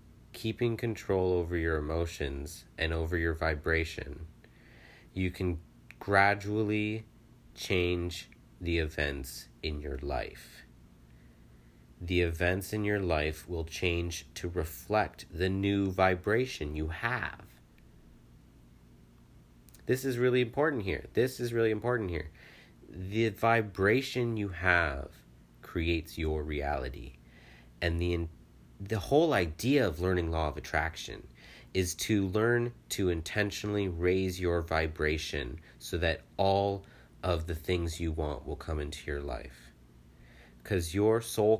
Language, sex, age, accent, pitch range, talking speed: English, male, 30-49, American, 75-100 Hz, 120 wpm